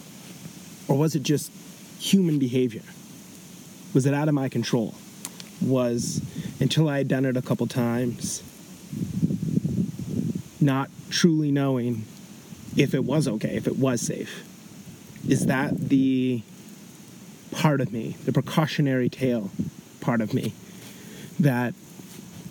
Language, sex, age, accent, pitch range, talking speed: English, male, 30-49, American, 130-190 Hz, 120 wpm